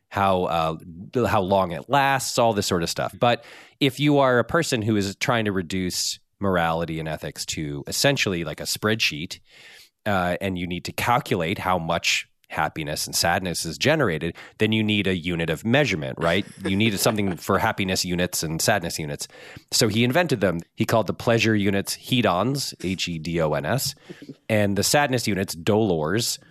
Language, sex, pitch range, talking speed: English, male, 85-115 Hz, 170 wpm